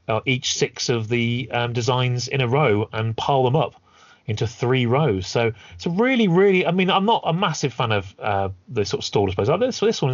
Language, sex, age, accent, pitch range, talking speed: English, male, 30-49, British, 110-145 Hz, 235 wpm